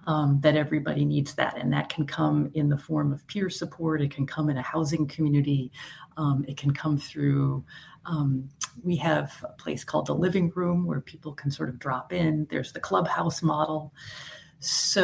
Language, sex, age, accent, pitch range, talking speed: English, female, 40-59, American, 150-175 Hz, 190 wpm